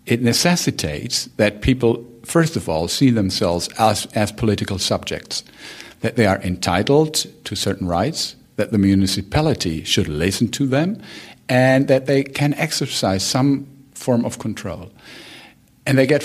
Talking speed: 145 wpm